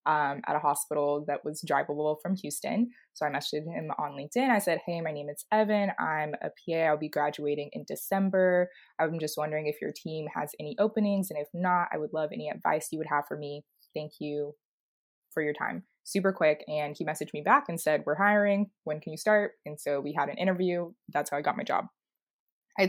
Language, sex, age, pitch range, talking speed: English, female, 20-39, 150-180 Hz, 225 wpm